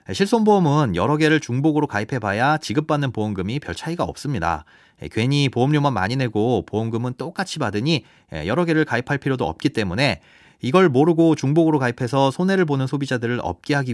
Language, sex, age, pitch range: Korean, male, 30-49, 115-155 Hz